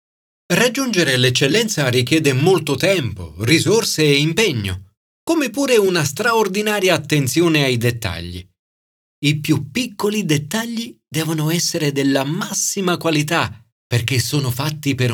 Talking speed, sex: 110 wpm, male